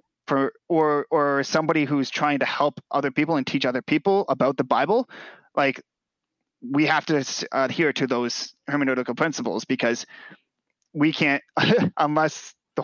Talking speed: 145 wpm